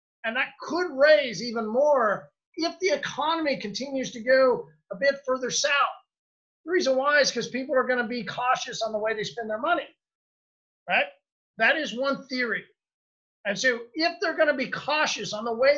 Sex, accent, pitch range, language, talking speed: male, American, 205-275 Hz, English, 190 wpm